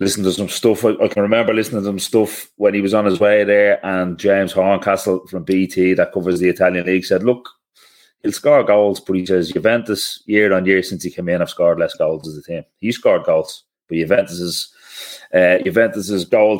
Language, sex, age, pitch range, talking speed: English, male, 30-49, 90-105 Hz, 225 wpm